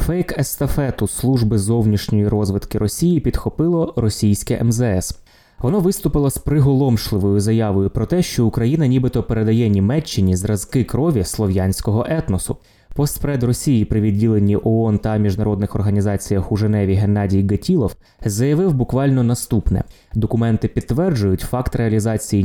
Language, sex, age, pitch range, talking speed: Ukrainian, male, 20-39, 105-130 Hz, 115 wpm